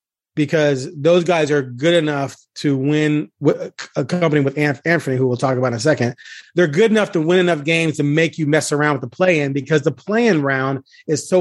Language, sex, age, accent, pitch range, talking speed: English, male, 30-49, American, 140-185 Hz, 210 wpm